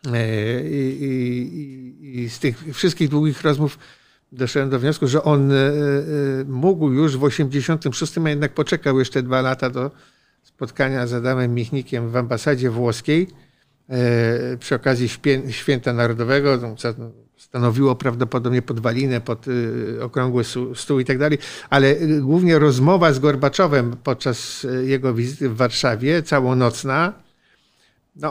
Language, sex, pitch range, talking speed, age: Polish, male, 125-145 Hz, 115 wpm, 50-69